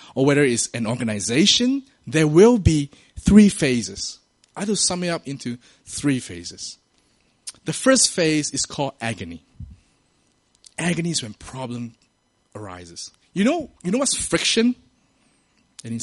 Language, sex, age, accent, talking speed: English, male, 20-39, Malaysian, 135 wpm